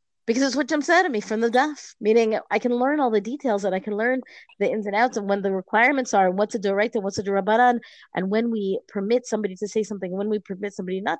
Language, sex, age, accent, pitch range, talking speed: English, female, 30-49, American, 190-245 Hz, 300 wpm